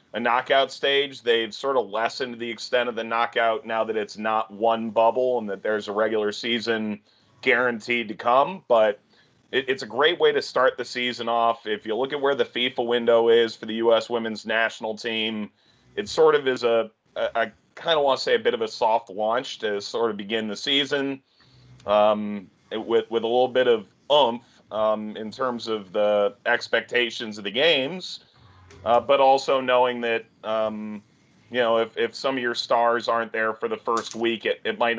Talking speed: 200 wpm